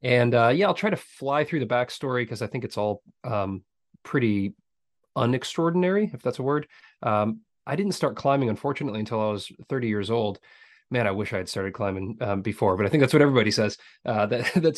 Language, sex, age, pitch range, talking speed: English, male, 30-49, 100-125 Hz, 215 wpm